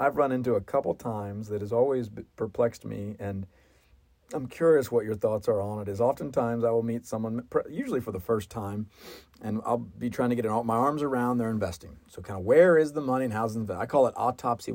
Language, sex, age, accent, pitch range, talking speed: English, male, 40-59, American, 110-140 Hz, 230 wpm